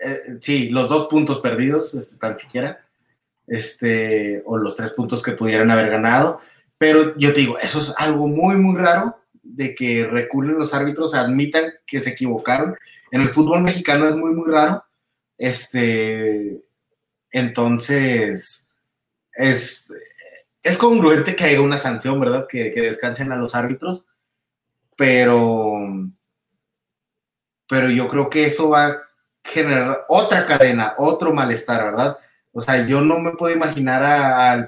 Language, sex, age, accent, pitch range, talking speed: Spanish, male, 30-49, Mexican, 120-150 Hz, 140 wpm